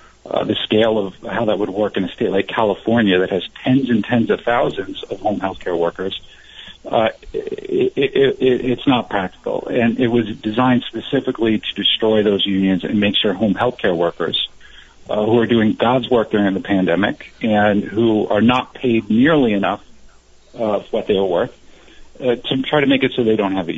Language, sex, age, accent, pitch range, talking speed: English, male, 40-59, American, 95-125 Hz, 200 wpm